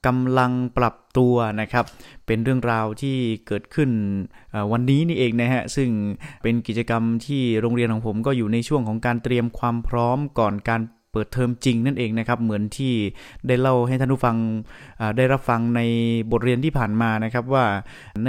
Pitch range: 115-125 Hz